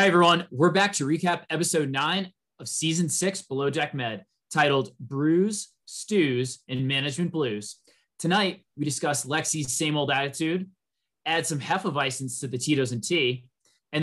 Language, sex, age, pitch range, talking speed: English, male, 20-39, 135-165 Hz, 165 wpm